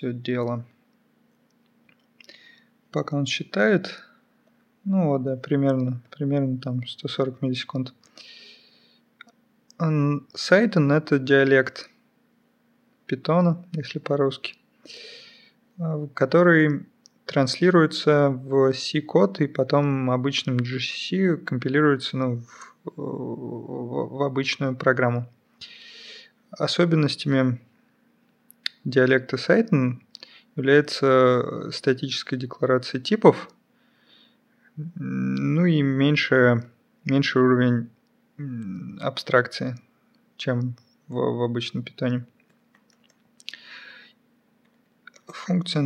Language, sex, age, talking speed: Russian, male, 20-39, 70 wpm